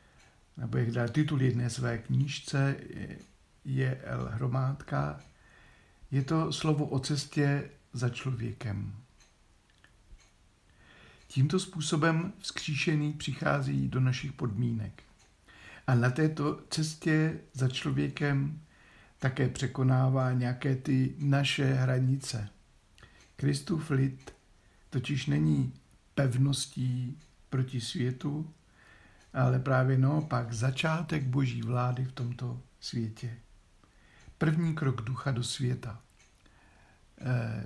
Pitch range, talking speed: 120-140 Hz, 90 wpm